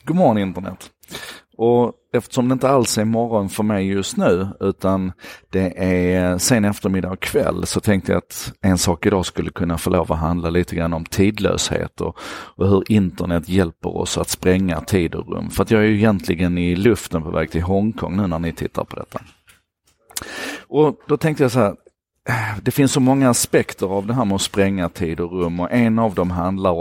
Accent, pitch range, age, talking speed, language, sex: native, 90-105 Hz, 40-59, 205 wpm, Swedish, male